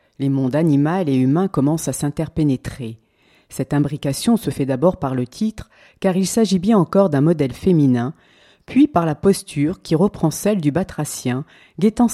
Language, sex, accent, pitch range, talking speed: French, female, French, 140-195 Hz, 170 wpm